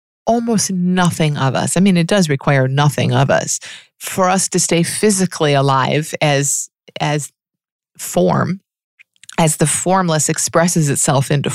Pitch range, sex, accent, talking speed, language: 145-175 Hz, female, American, 140 wpm, English